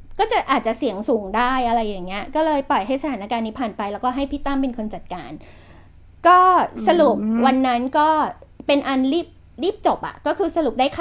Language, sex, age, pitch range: Thai, female, 20-39, 235-300 Hz